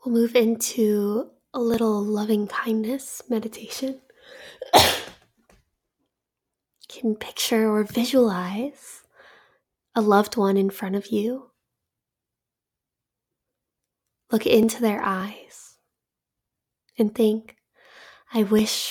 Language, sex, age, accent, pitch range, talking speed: English, female, 10-29, American, 210-245 Hz, 85 wpm